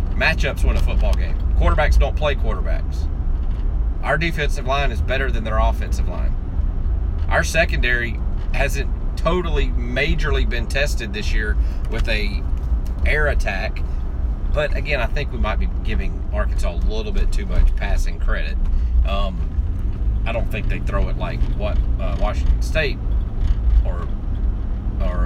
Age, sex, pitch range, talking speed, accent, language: 30-49, male, 65-95 Hz, 145 wpm, American, English